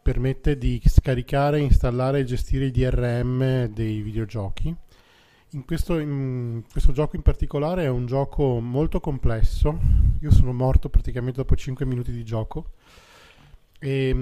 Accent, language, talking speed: native, Italian, 135 wpm